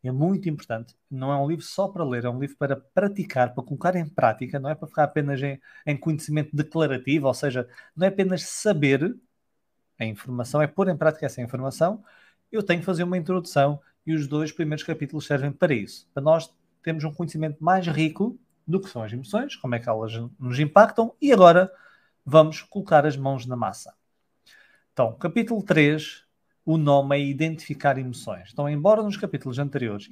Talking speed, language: 190 wpm, Portuguese